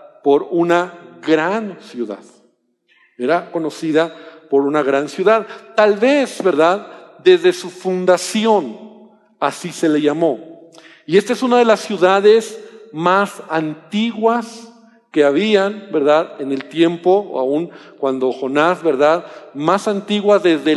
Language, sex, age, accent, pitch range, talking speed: Spanish, male, 50-69, Mexican, 160-205 Hz, 125 wpm